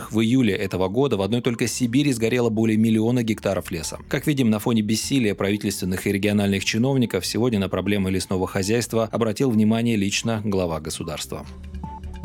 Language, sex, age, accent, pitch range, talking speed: Russian, male, 30-49, native, 95-120 Hz, 155 wpm